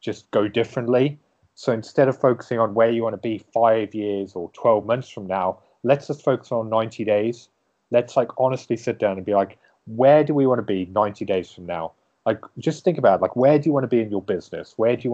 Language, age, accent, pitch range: English, 30-49, British, 105-120 Hz